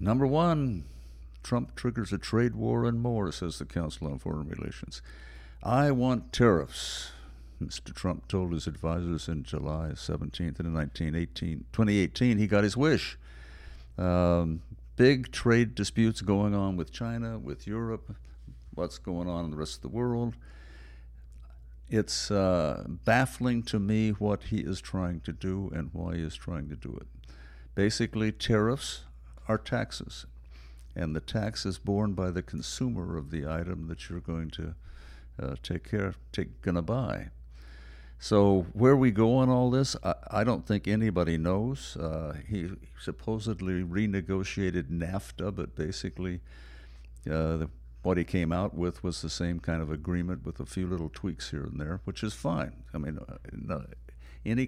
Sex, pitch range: male, 75-105 Hz